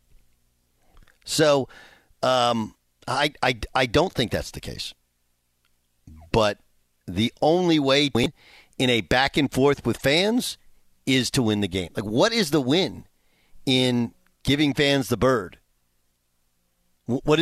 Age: 50-69